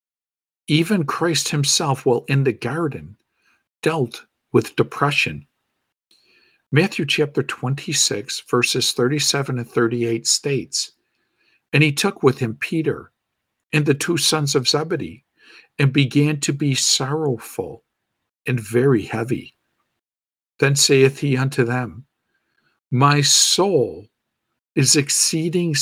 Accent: American